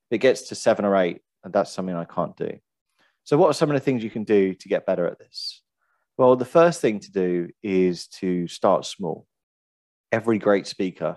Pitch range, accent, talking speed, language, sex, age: 85-110 Hz, British, 215 wpm, English, male, 30-49